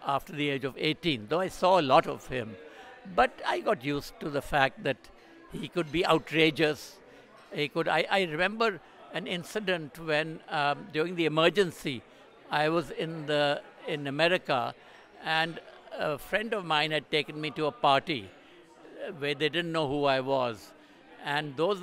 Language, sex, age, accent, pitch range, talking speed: Hindi, male, 60-79, native, 145-175 Hz, 170 wpm